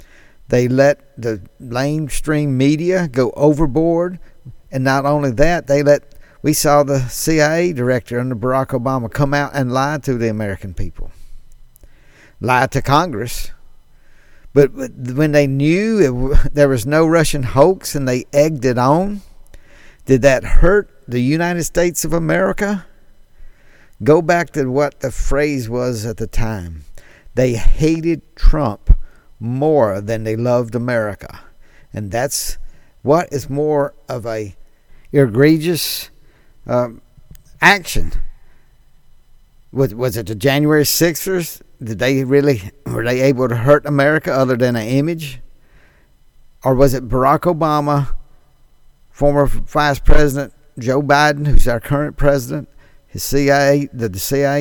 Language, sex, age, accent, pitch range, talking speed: English, male, 50-69, American, 125-150 Hz, 130 wpm